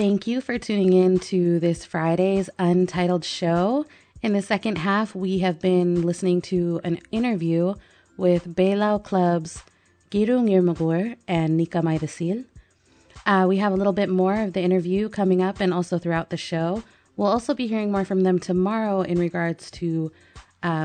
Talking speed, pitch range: 165 wpm, 170-195 Hz